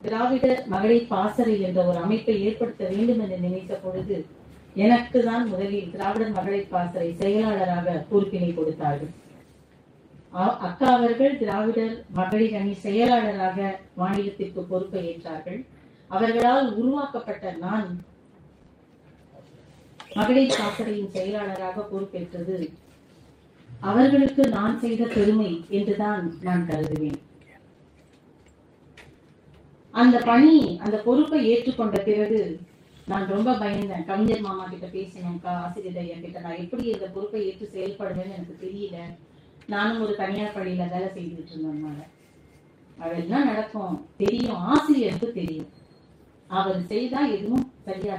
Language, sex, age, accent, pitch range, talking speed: Tamil, female, 30-49, native, 180-225 Hz, 85 wpm